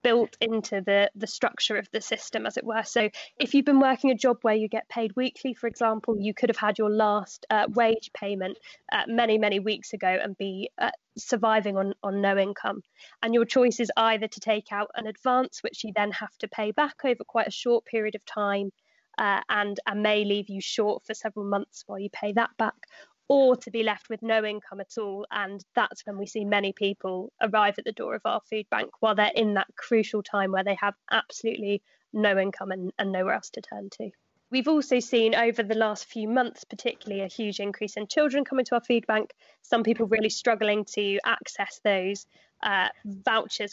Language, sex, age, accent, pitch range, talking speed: English, female, 20-39, British, 205-235 Hz, 215 wpm